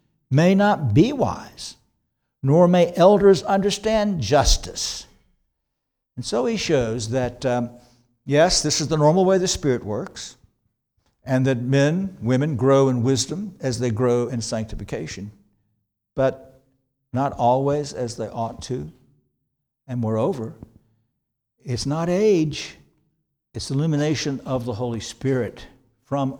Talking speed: 125 wpm